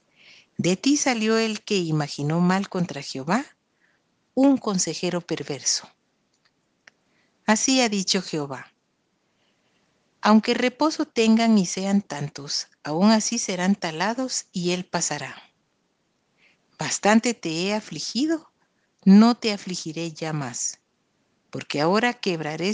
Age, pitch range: 50-69, 170-230 Hz